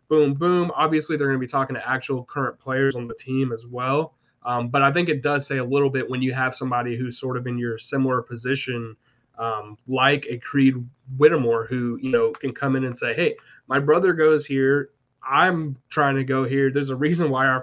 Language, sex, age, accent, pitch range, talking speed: English, male, 20-39, American, 130-150 Hz, 225 wpm